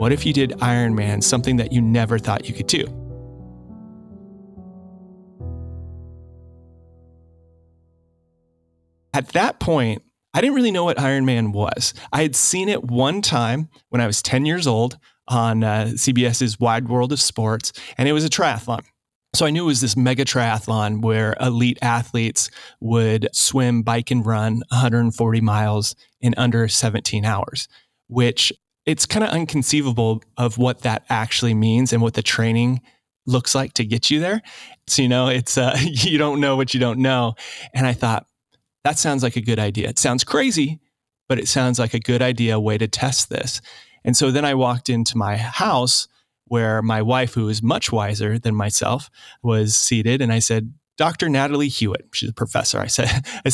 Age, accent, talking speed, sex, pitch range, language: 30-49, American, 175 wpm, male, 110-135 Hz, English